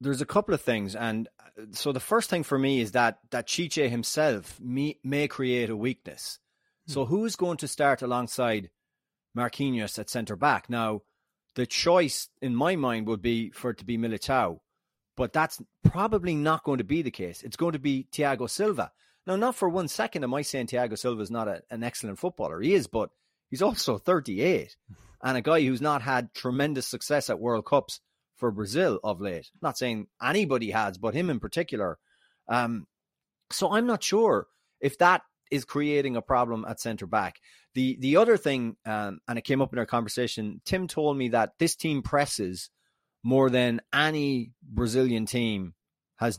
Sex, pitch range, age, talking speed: male, 115-145 Hz, 30-49, 185 wpm